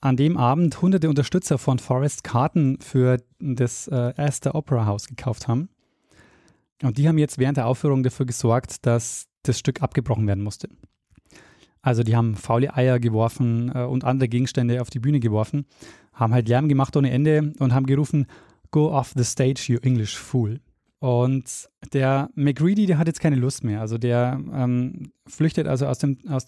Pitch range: 125-145 Hz